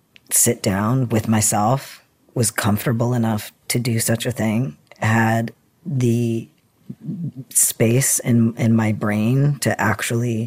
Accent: American